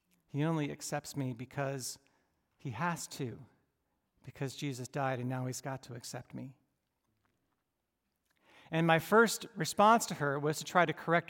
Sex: male